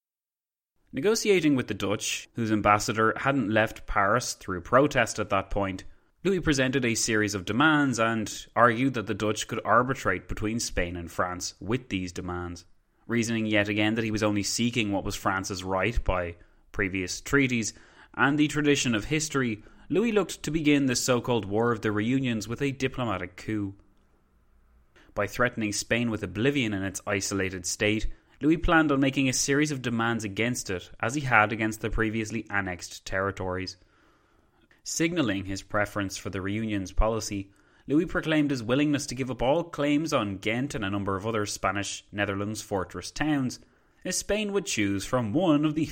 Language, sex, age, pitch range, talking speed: English, male, 20-39, 100-130 Hz, 170 wpm